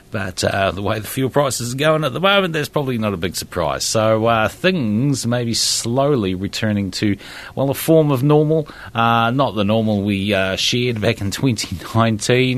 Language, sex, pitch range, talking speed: English, male, 90-120 Hz, 195 wpm